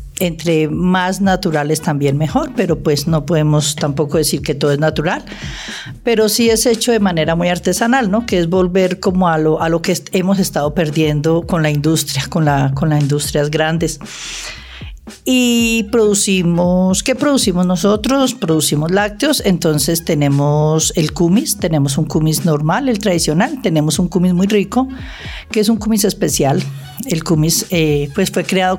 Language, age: Spanish, 50-69